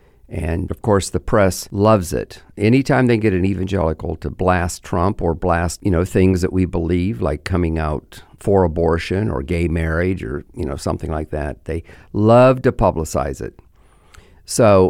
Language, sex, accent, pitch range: English, male, American, 85-110 Hz